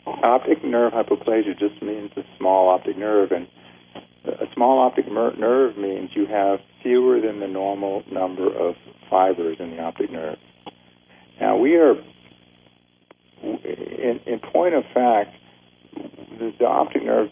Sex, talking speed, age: male, 140 wpm, 50-69